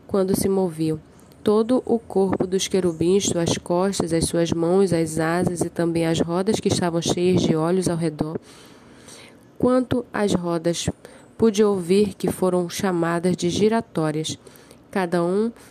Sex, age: female, 20-39